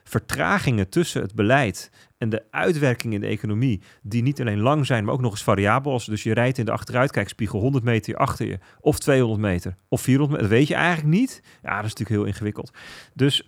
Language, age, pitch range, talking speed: Dutch, 40-59, 105-130 Hz, 215 wpm